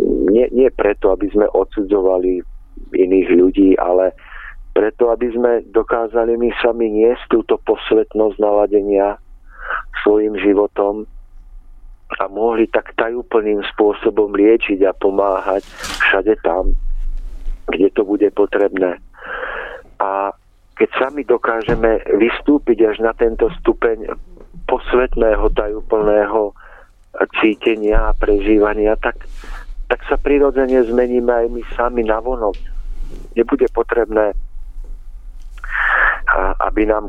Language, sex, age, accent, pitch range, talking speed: Czech, male, 50-69, native, 95-115 Hz, 100 wpm